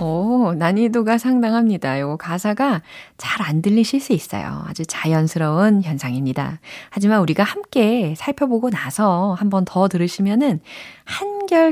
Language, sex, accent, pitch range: Korean, female, native, 155-230 Hz